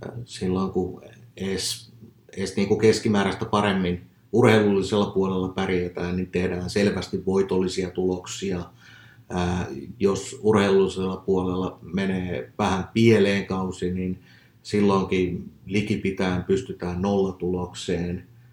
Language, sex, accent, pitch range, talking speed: Finnish, male, native, 90-115 Hz, 90 wpm